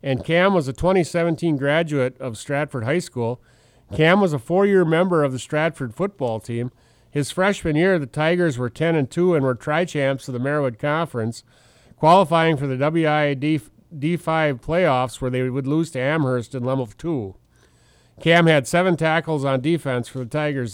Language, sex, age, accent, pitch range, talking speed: English, male, 40-59, American, 130-165 Hz, 170 wpm